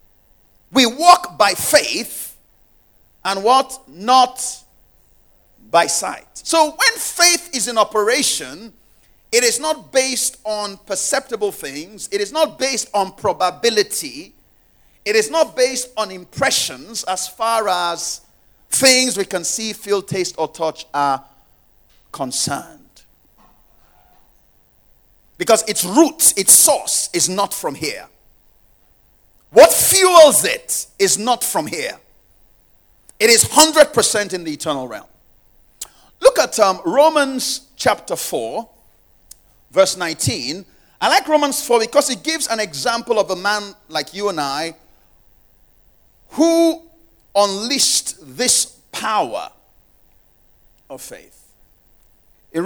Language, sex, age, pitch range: English, male, 50-69, 185-305 Hz